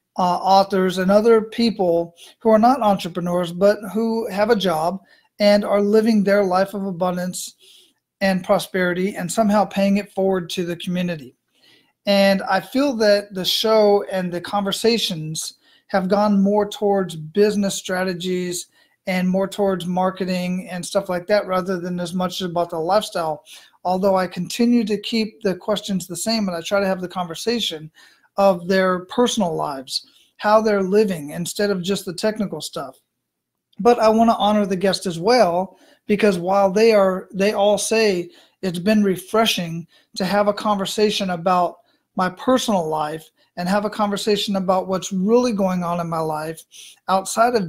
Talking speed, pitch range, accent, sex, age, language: 165 wpm, 180-210 Hz, American, male, 40-59, English